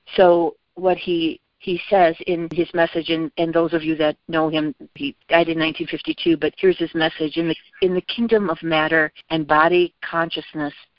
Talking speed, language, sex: 185 wpm, English, female